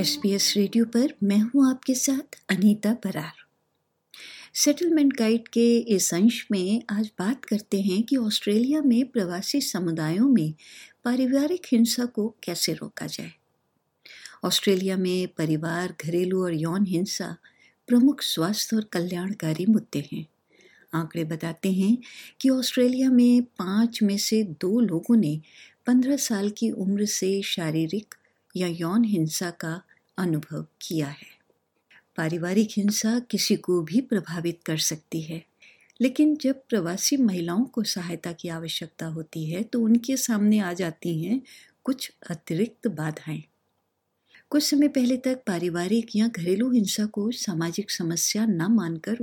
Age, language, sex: 60-79, Hindi, female